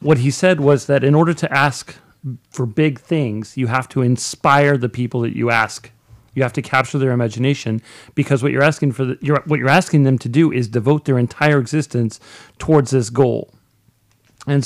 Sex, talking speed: male, 200 wpm